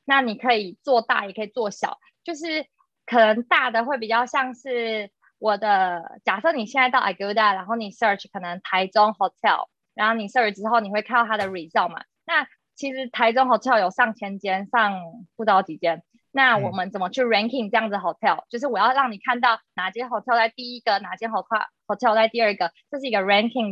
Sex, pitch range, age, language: female, 195-250 Hz, 20-39, Chinese